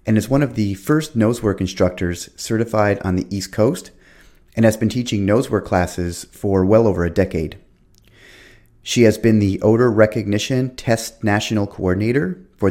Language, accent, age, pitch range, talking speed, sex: English, American, 30-49, 90-110 Hz, 160 wpm, male